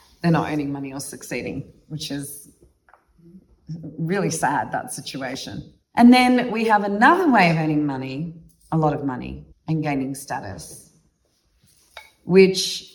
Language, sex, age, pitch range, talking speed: English, female, 30-49, 155-185 Hz, 135 wpm